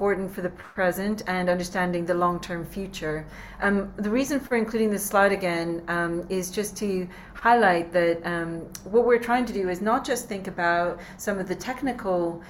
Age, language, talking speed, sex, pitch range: 40-59, English, 185 wpm, female, 170-195 Hz